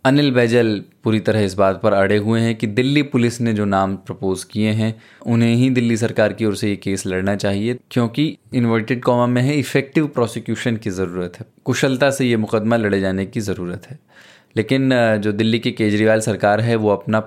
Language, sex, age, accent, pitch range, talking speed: Hindi, male, 20-39, native, 105-125 Hz, 200 wpm